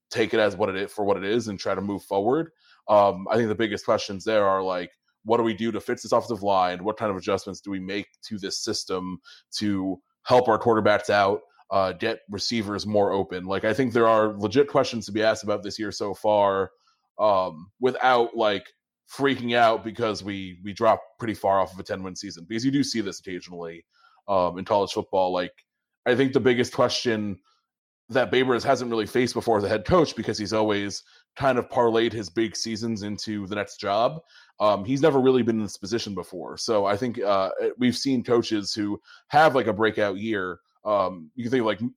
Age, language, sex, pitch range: 20-39, English, male, 100-120 Hz